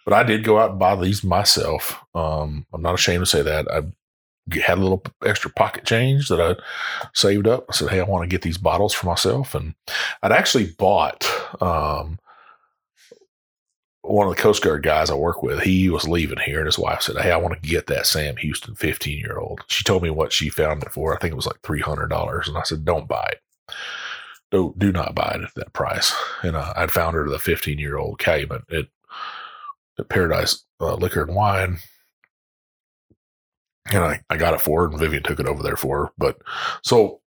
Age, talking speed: 30-49, 205 wpm